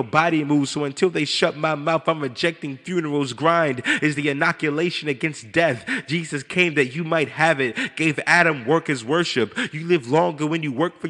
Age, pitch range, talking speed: 30-49, 145-170 Hz, 190 wpm